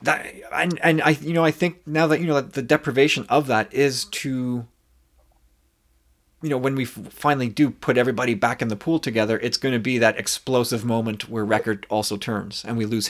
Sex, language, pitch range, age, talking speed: male, English, 105-145 Hz, 30-49, 210 wpm